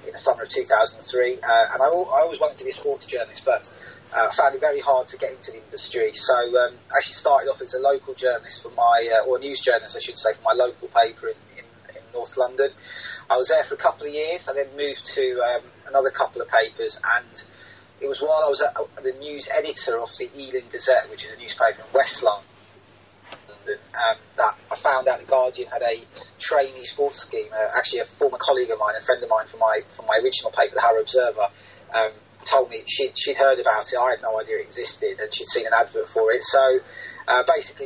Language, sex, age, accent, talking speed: English, male, 30-49, British, 230 wpm